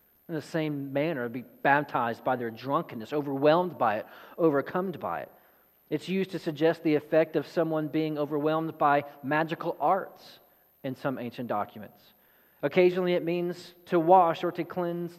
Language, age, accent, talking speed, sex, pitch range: English, 40-59, American, 160 wpm, male, 145-185 Hz